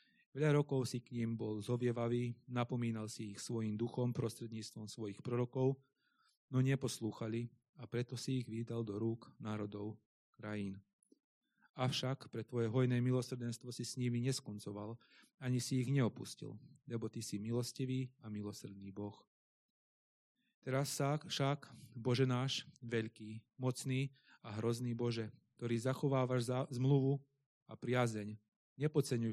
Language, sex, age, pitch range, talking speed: Slovak, male, 30-49, 110-130 Hz, 125 wpm